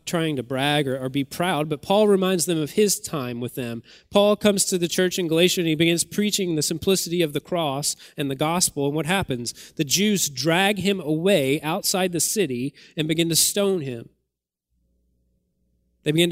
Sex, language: male, English